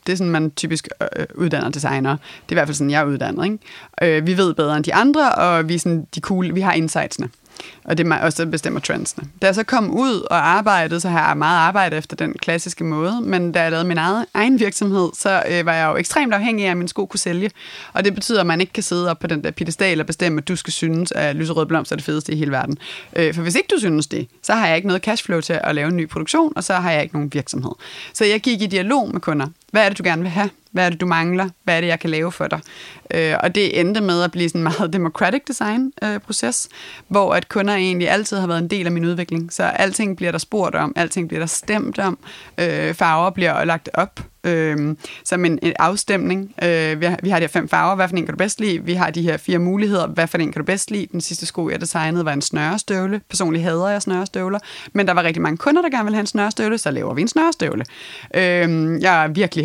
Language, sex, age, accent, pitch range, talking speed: Danish, female, 30-49, native, 165-200 Hz, 265 wpm